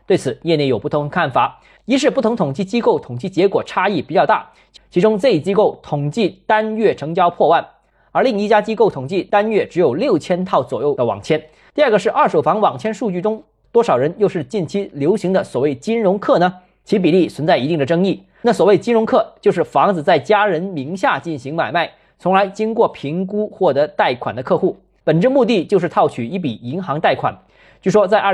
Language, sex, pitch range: Chinese, male, 160-215 Hz